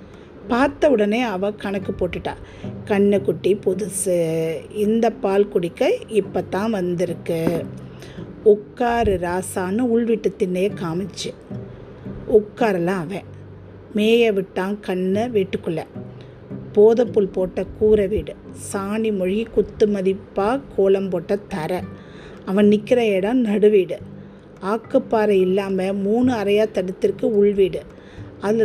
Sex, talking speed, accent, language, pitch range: female, 95 wpm, native, Tamil, 190-225 Hz